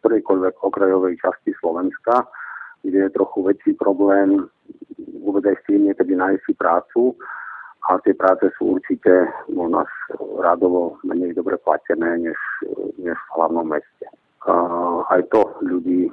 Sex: male